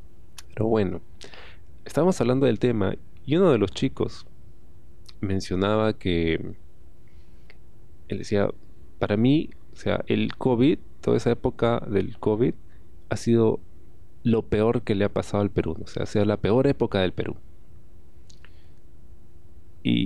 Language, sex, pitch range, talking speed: Spanish, male, 85-110 Hz, 135 wpm